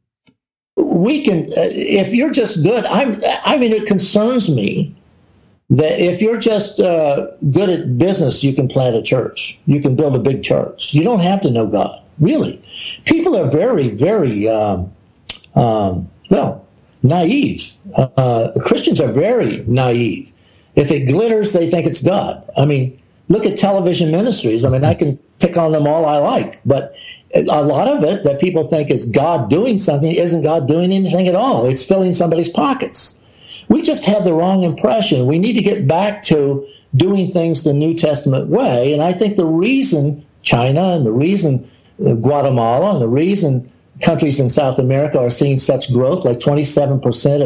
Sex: male